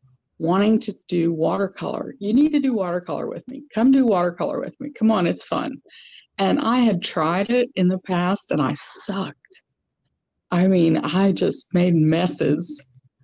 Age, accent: 50-69, American